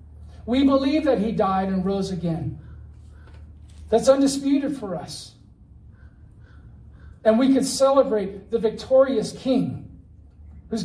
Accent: American